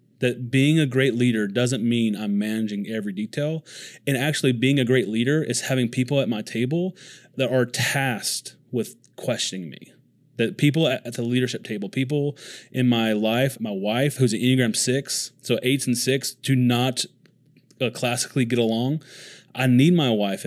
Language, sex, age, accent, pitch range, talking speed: English, male, 30-49, American, 115-140 Hz, 170 wpm